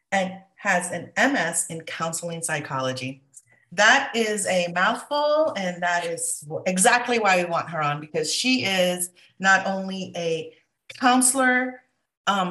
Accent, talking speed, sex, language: American, 135 wpm, female, English